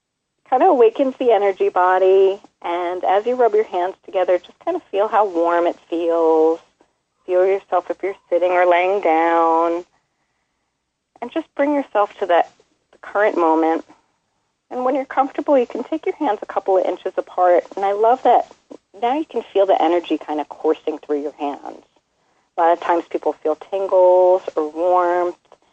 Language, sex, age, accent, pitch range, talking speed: English, female, 40-59, American, 165-205 Hz, 175 wpm